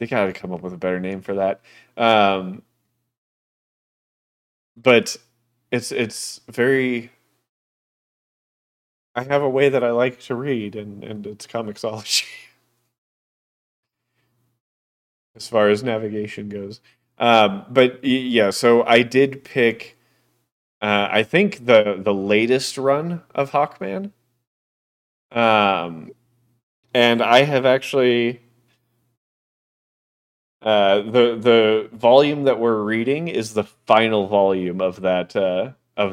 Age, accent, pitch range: 30-49, American, 105-125 Hz